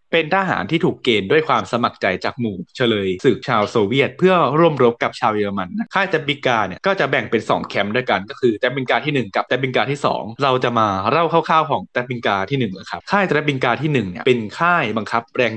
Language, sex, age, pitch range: Thai, male, 20-39, 115-160 Hz